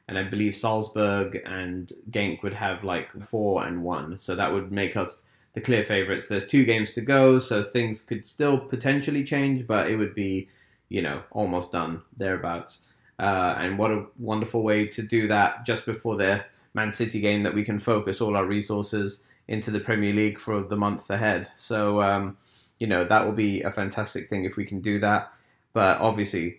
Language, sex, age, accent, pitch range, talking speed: English, male, 20-39, British, 100-115 Hz, 195 wpm